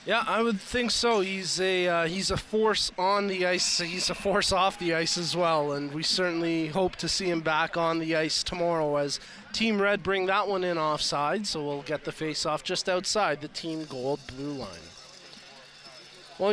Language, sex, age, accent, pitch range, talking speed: English, male, 30-49, American, 175-215 Hz, 205 wpm